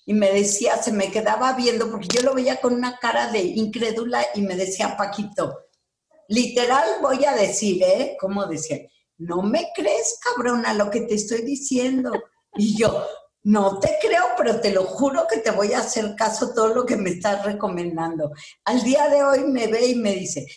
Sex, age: female, 50-69